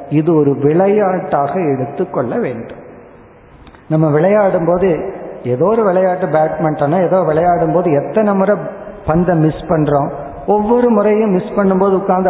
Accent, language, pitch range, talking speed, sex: native, Tamil, 155-195 Hz, 120 wpm, male